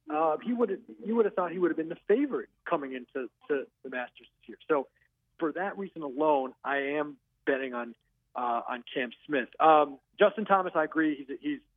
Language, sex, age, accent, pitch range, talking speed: English, male, 40-59, American, 130-160 Hz, 195 wpm